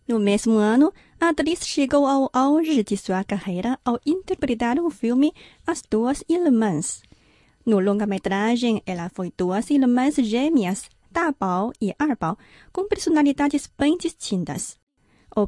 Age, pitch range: 30-49, 205-295 Hz